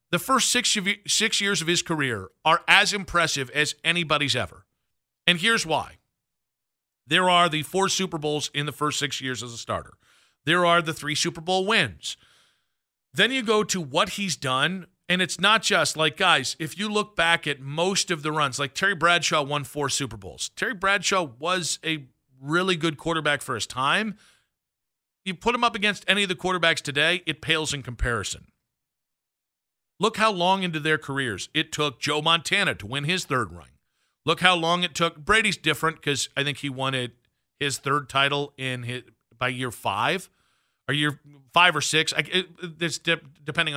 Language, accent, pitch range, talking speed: English, American, 130-180 Hz, 185 wpm